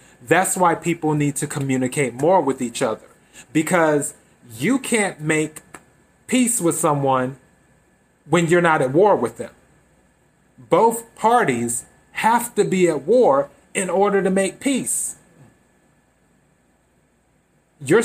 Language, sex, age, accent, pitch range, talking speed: English, male, 30-49, American, 130-175 Hz, 125 wpm